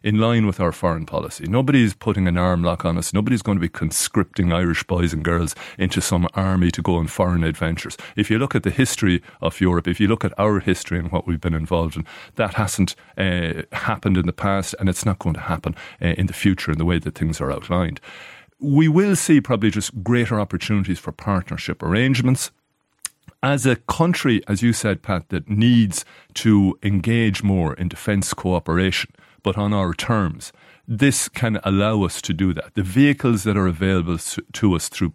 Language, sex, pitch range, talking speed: English, male, 90-110 Hz, 205 wpm